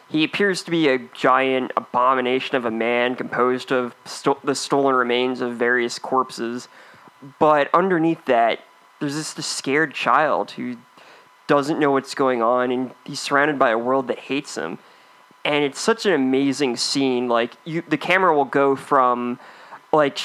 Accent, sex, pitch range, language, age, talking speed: American, male, 125-145 Hz, English, 20-39, 165 wpm